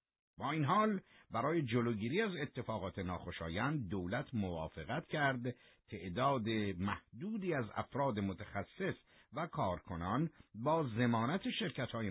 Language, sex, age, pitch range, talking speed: Persian, male, 50-69, 90-135 Hz, 105 wpm